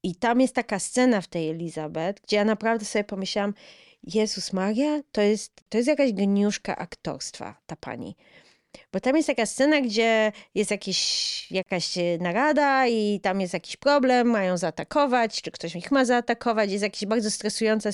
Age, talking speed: 20-39, 160 wpm